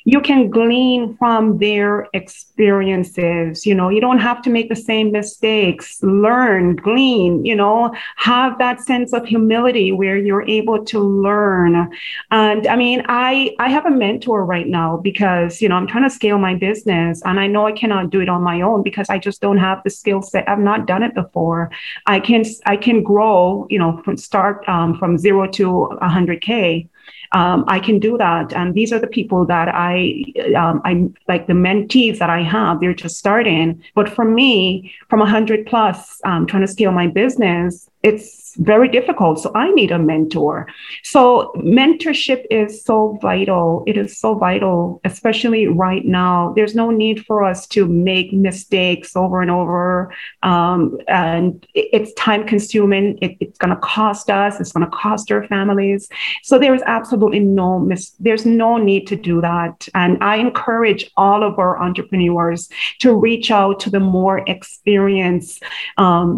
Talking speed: 180 wpm